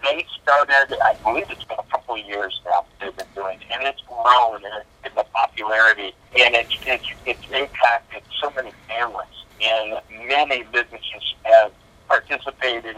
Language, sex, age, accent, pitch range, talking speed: English, male, 50-69, American, 105-130 Hz, 160 wpm